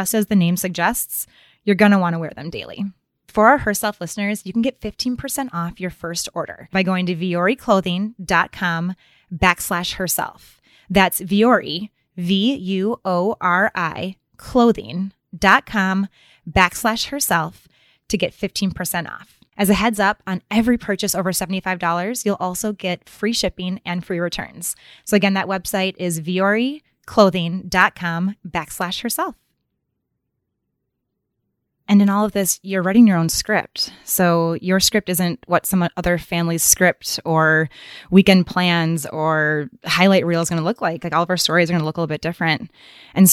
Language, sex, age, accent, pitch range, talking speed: English, female, 20-39, American, 170-200 Hz, 150 wpm